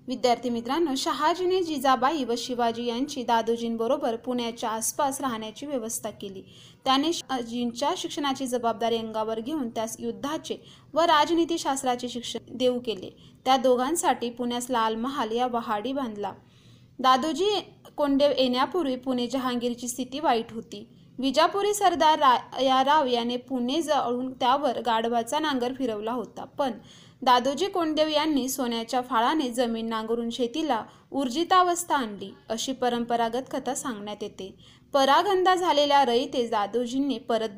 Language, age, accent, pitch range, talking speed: Marathi, 20-39, native, 235-285 Hz, 100 wpm